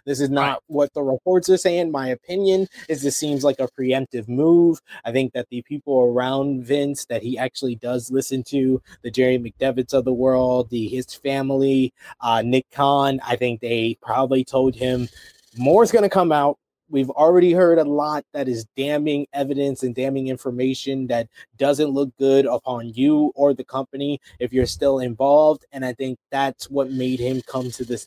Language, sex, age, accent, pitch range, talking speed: English, male, 20-39, American, 125-145 Hz, 190 wpm